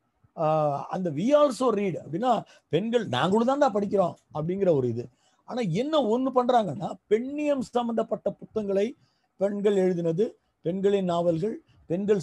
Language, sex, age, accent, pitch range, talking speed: Tamil, male, 50-69, native, 165-230 Hz, 105 wpm